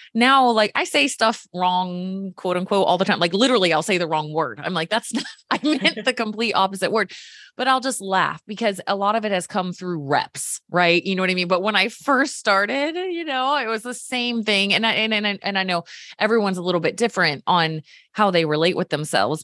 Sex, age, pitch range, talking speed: female, 20-39, 165-235 Hz, 245 wpm